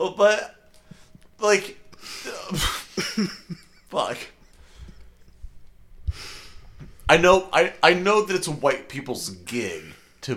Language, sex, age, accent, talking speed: English, male, 30-49, American, 80 wpm